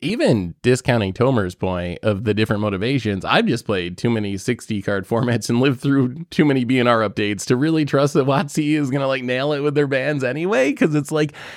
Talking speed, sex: 215 wpm, male